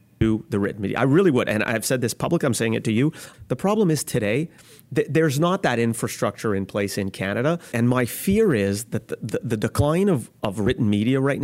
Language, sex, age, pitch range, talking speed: English, male, 30-49, 105-145 Hz, 230 wpm